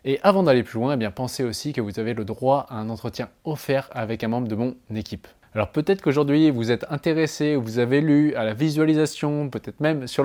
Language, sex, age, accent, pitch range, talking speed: French, male, 20-39, French, 120-150 Hz, 230 wpm